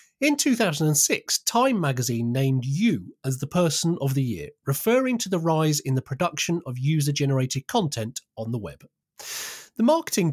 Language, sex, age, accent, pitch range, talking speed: English, male, 30-49, British, 135-195 Hz, 155 wpm